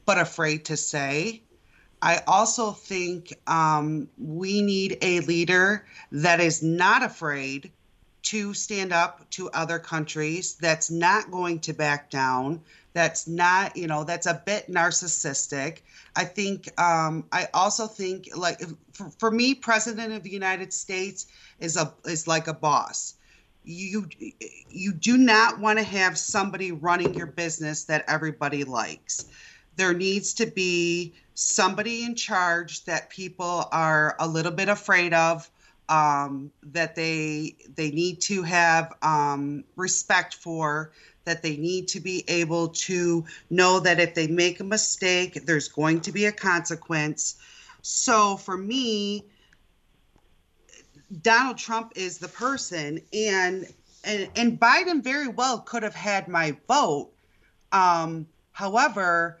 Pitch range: 160-195 Hz